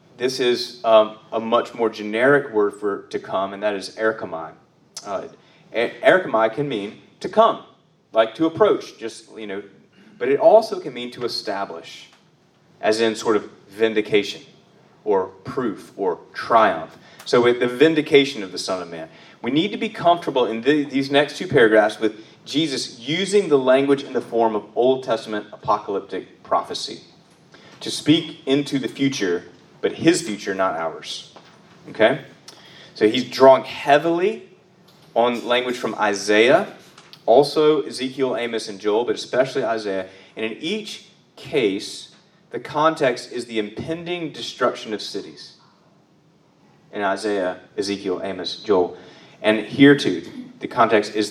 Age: 30-49